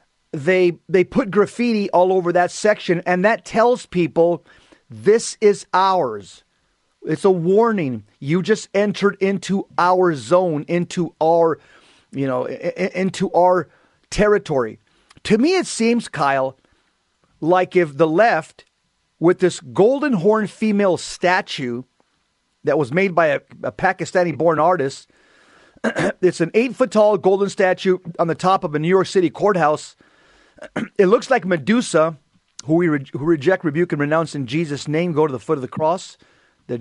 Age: 40-59